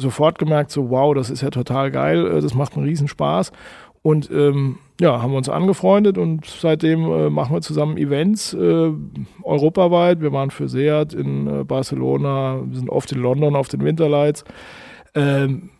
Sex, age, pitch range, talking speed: male, 40-59, 140-170 Hz, 170 wpm